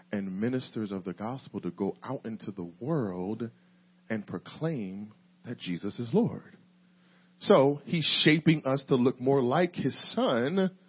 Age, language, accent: 40-59, English, American